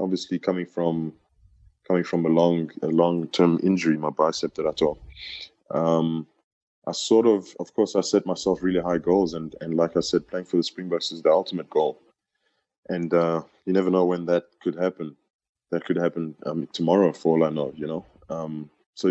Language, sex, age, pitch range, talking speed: English, male, 20-39, 80-90 Hz, 190 wpm